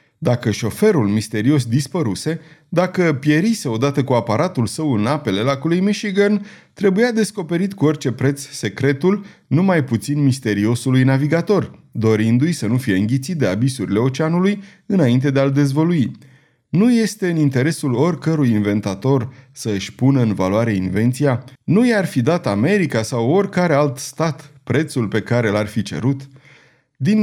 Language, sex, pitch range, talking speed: Romanian, male, 120-175 Hz, 140 wpm